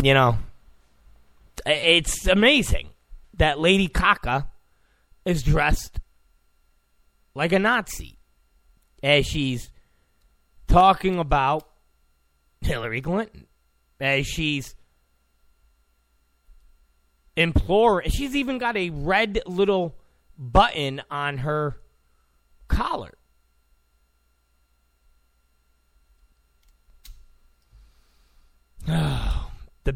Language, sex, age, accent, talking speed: English, male, 30-49, American, 65 wpm